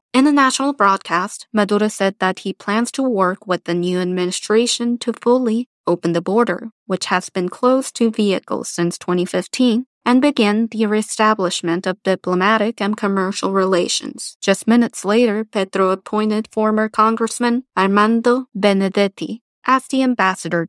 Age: 20-39